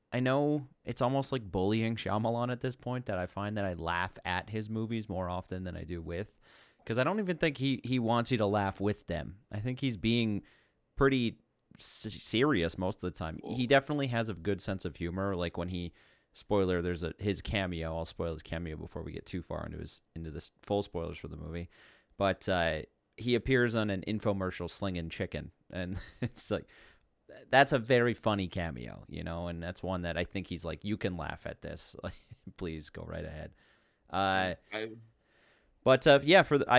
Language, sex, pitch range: English, male, 90-115 Hz